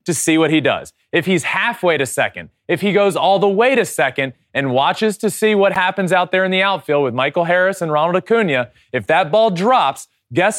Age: 20-39